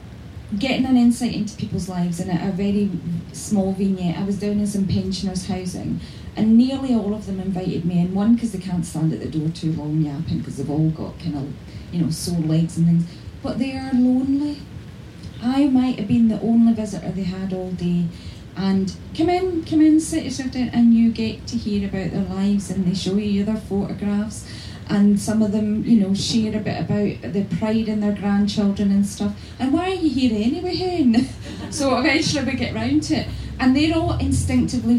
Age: 10-29